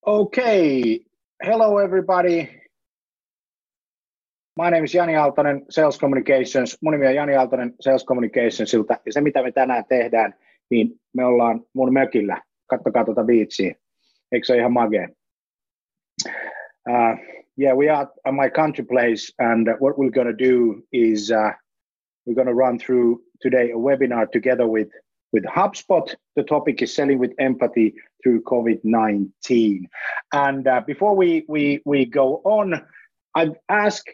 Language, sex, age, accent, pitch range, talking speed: Finnish, male, 30-49, native, 120-155 Hz, 140 wpm